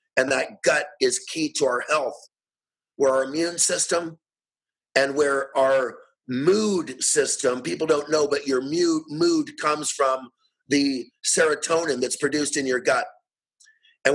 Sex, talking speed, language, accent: male, 140 wpm, English, American